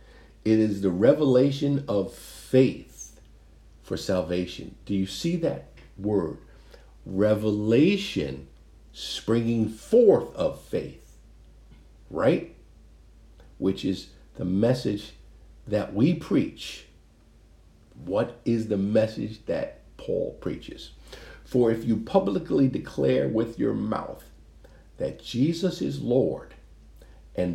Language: English